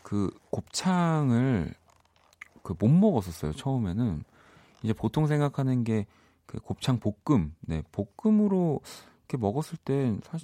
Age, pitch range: 40-59, 85-125 Hz